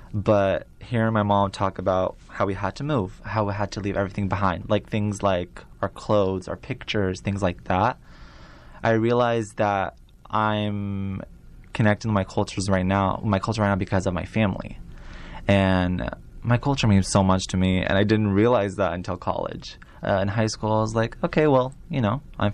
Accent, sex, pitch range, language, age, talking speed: American, male, 95-115 Hz, English, 20-39, 195 wpm